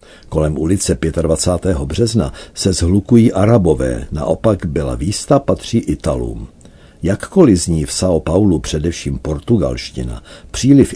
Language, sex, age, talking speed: Czech, male, 60-79, 110 wpm